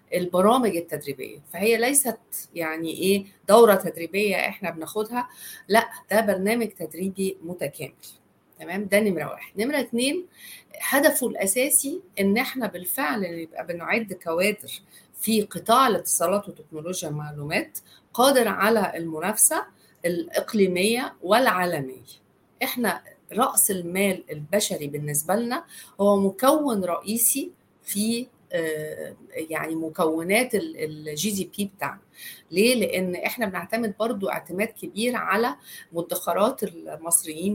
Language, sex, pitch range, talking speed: Arabic, female, 170-230 Hz, 100 wpm